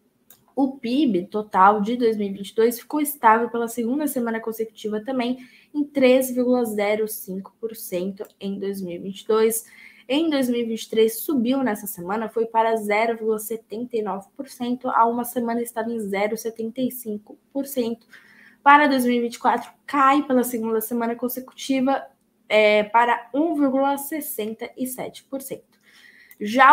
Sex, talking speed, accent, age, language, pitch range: female, 90 wpm, Brazilian, 10-29, Portuguese, 220-260 Hz